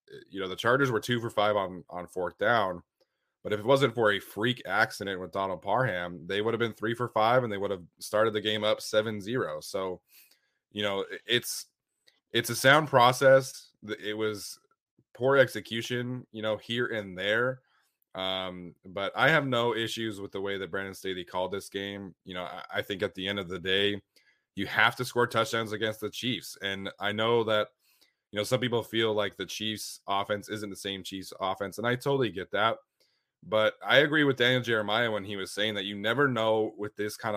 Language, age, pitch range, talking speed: English, 20-39, 100-125 Hz, 210 wpm